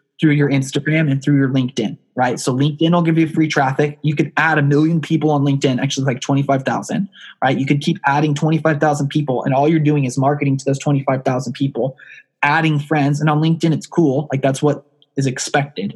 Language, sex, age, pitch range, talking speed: English, male, 20-39, 135-155 Hz, 205 wpm